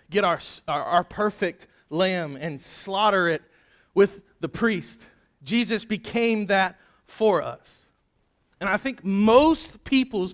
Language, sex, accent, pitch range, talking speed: English, male, American, 150-210 Hz, 130 wpm